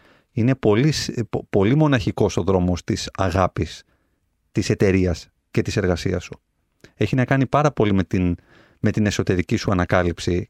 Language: Greek